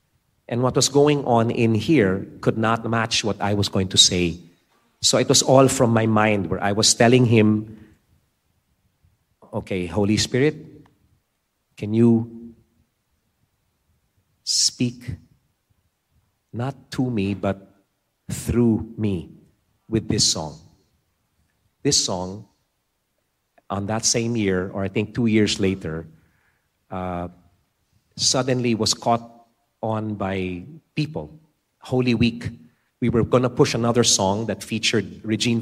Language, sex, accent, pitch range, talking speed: English, male, Filipino, 100-125 Hz, 125 wpm